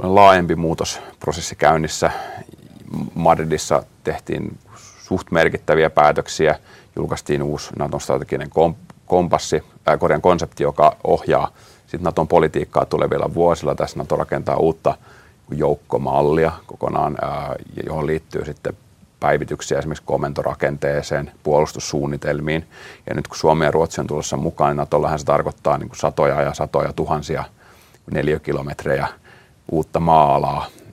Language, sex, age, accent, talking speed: Finnish, male, 30-49, native, 105 wpm